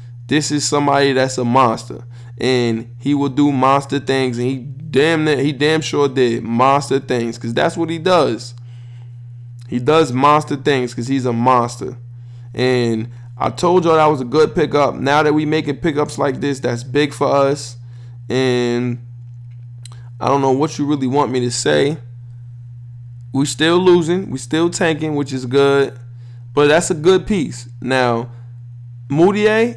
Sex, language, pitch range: male, English, 120-150 Hz